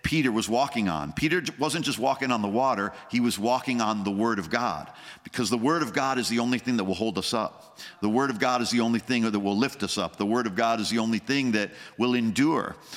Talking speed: 265 wpm